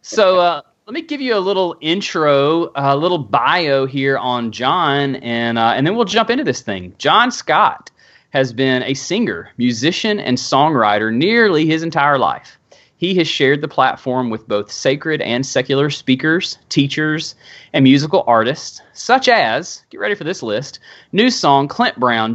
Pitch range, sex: 125-175 Hz, male